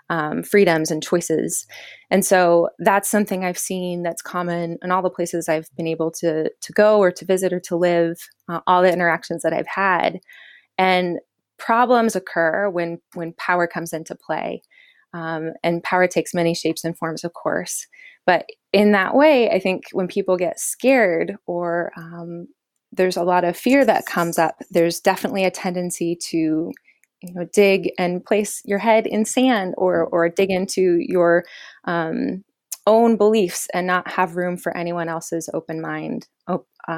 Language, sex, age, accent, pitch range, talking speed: English, female, 20-39, American, 170-205 Hz, 170 wpm